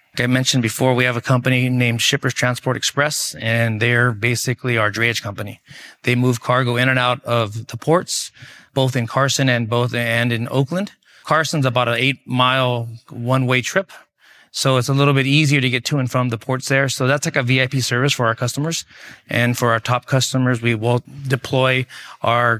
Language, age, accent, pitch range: English, 30-49, American, 115-130 Hz